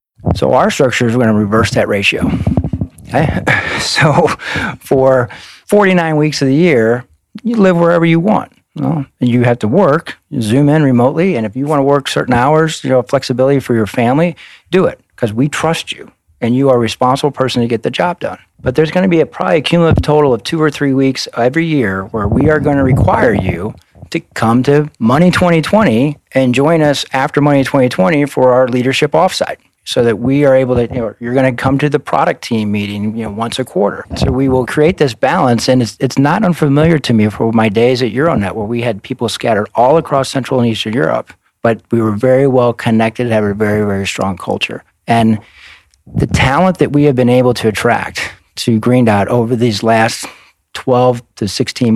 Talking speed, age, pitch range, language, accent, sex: 210 wpm, 40-59, 115-145 Hz, English, American, male